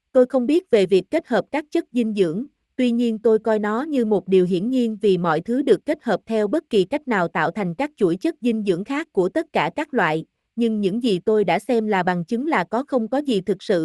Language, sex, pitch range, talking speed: Vietnamese, female, 195-255 Hz, 265 wpm